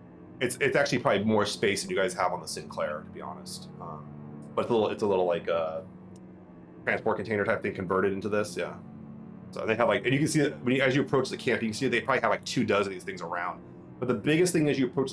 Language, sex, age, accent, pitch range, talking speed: English, male, 30-49, American, 90-125 Hz, 280 wpm